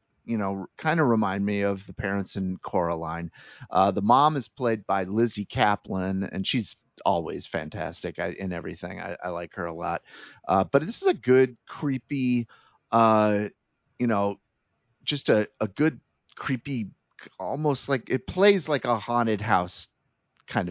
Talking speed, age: 160 wpm, 40-59